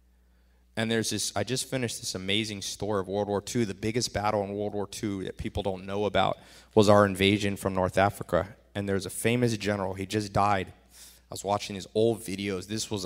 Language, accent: English, American